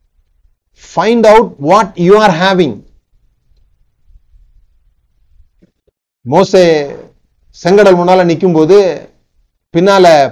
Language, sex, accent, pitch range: Tamil, male, native, 135-190 Hz